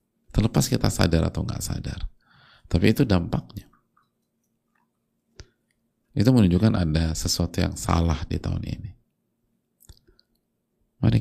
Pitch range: 85-105 Hz